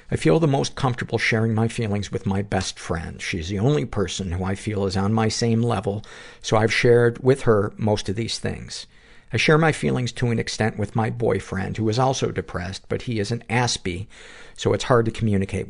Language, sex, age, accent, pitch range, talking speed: English, male, 50-69, American, 95-115 Hz, 220 wpm